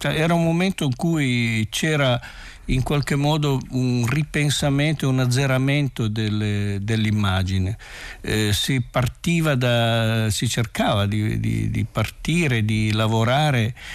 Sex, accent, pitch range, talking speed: male, native, 110-135 Hz, 110 wpm